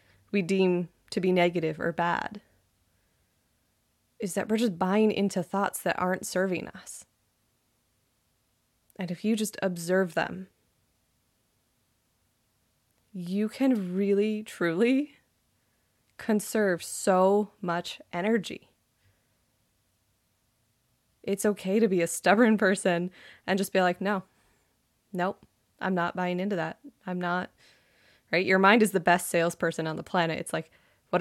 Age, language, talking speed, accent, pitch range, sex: 20-39, English, 125 wpm, American, 165-210 Hz, female